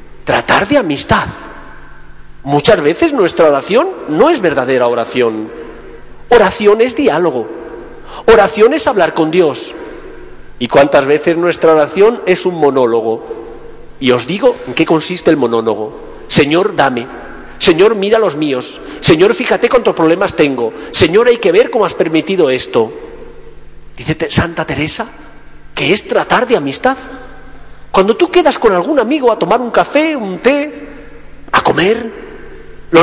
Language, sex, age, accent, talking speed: Spanish, male, 40-59, Spanish, 140 wpm